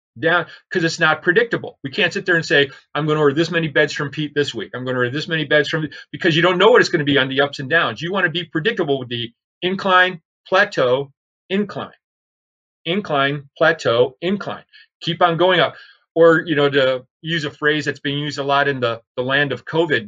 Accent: American